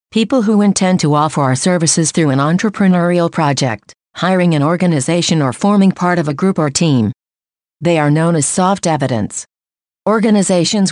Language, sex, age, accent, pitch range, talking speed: English, female, 50-69, American, 155-190 Hz, 160 wpm